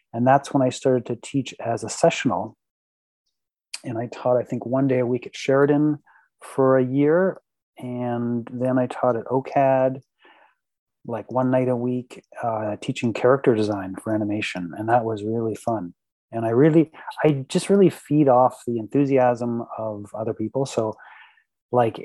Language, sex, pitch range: English, male, 115-135 Hz